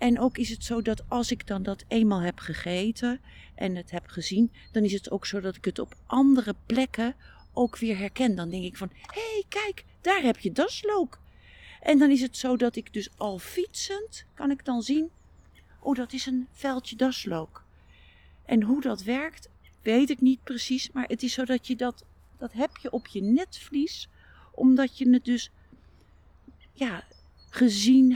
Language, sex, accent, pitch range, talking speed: Dutch, female, Dutch, 185-260 Hz, 190 wpm